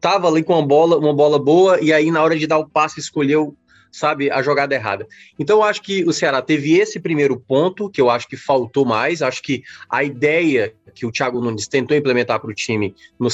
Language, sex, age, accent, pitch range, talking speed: Portuguese, male, 20-39, Brazilian, 130-165 Hz, 230 wpm